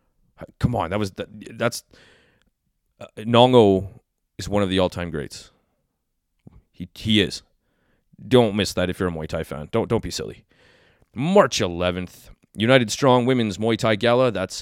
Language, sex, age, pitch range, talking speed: English, male, 30-49, 95-120 Hz, 160 wpm